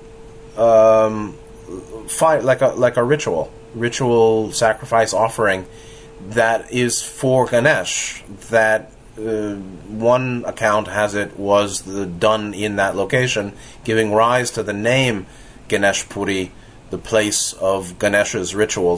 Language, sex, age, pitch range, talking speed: English, male, 30-49, 105-130 Hz, 115 wpm